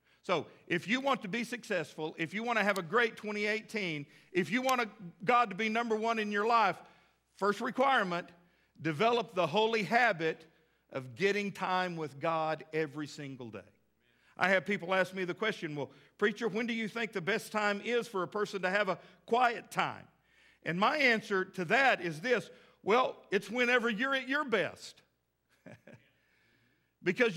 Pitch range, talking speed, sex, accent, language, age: 175-235 Hz, 175 wpm, male, American, English, 50-69